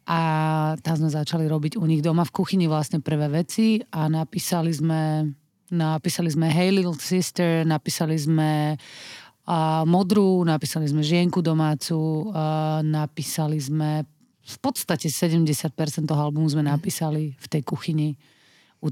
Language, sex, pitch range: Slovak, female, 150-175 Hz